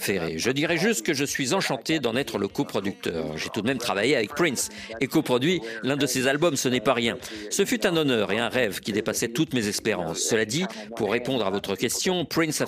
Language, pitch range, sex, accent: French, 125-170 Hz, male, French